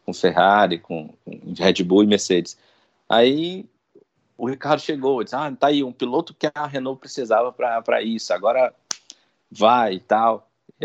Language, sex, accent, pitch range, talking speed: Portuguese, male, Brazilian, 95-140 Hz, 160 wpm